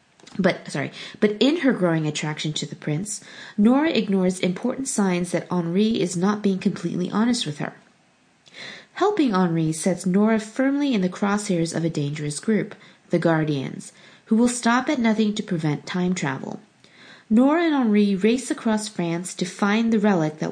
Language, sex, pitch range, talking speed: English, female, 170-215 Hz, 165 wpm